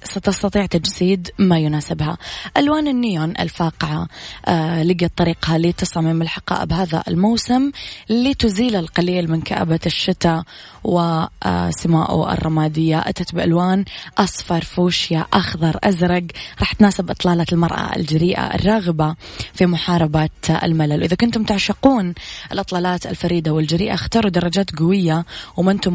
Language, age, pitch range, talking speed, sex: Arabic, 20-39, 165-195 Hz, 105 wpm, female